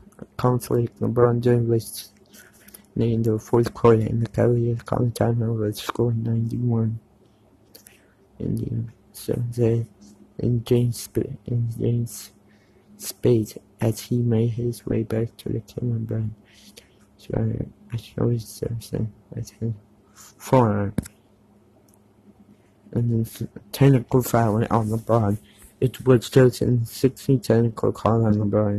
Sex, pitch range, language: male, 105-120 Hz, English